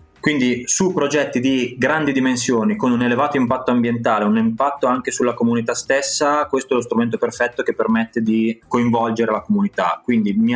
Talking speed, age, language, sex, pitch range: 170 wpm, 20-39, Italian, male, 105-140 Hz